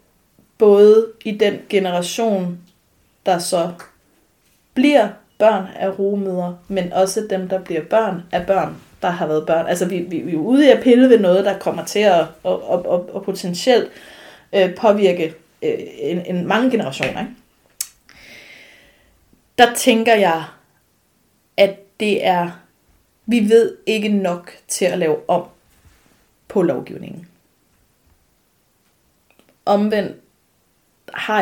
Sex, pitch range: female, 175-210 Hz